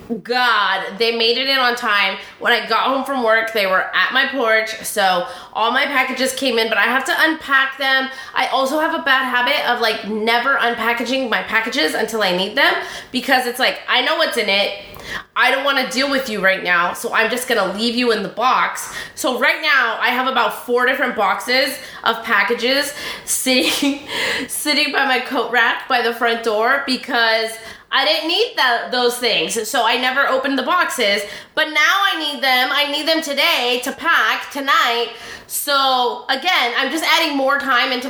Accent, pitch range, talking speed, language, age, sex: American, 225-275 Hz, 200 wpm, English, 20-39, female